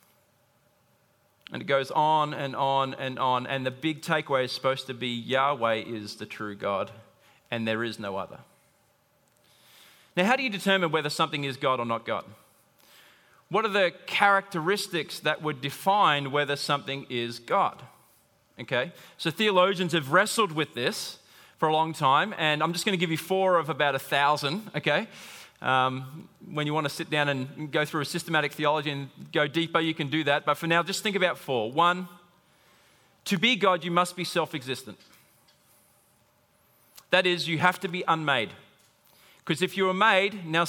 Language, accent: English, Australian